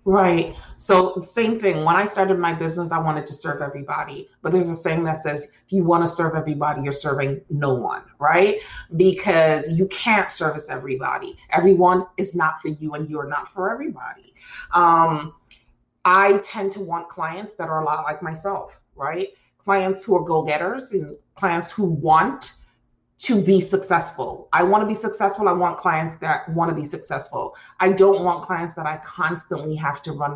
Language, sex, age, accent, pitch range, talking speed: English, female, 30-49, American, 150-195 Hz, 190 wpm